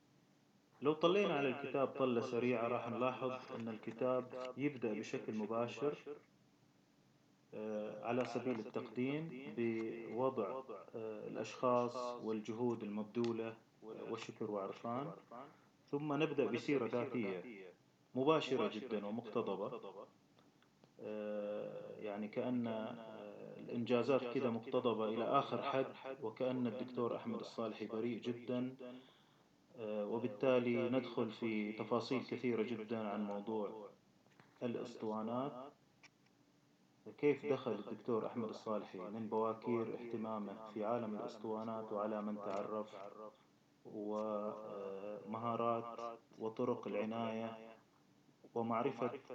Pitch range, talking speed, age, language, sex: 110-130 Hz, 85 wpm, 30-49, Arabic, male